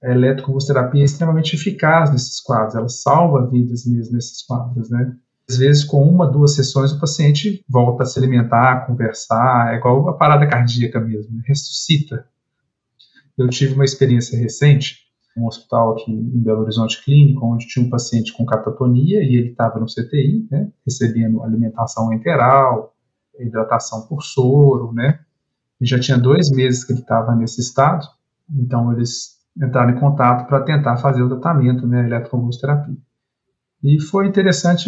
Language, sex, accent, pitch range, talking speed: Portuguese, male, Brazilian, 120-140 Hz, 155 wpm